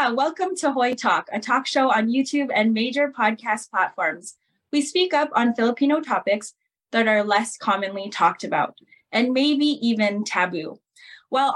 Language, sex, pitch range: English, female, 210-275 Hz